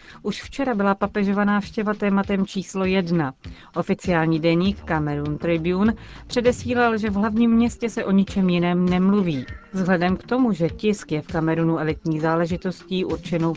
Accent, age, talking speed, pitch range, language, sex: native, 40-59, 145 wpm, 160-200 Hz, Czech, female